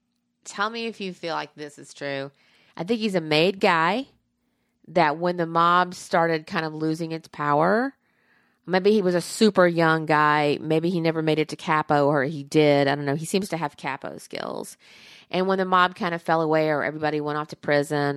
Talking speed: 215 wpm